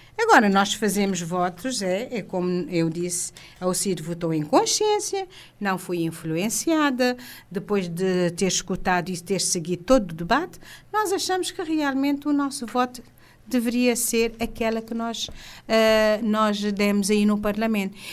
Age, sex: 50-69, female